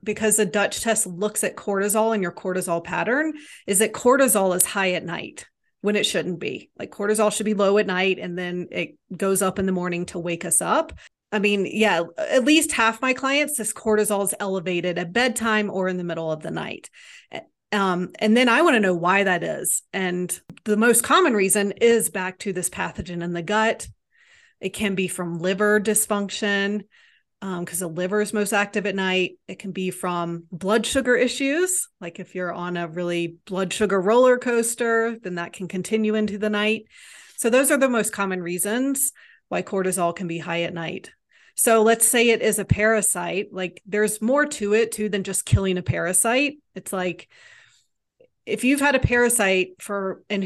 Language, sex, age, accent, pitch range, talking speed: English, female, 30-49, American, 185-230 Hz, 195 wpm